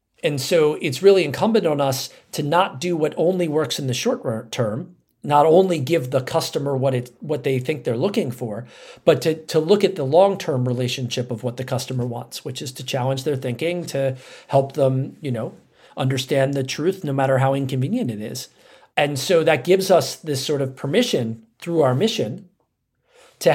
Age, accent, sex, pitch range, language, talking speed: 40-59, American, male, 130-165 Hz, English, 195 wpm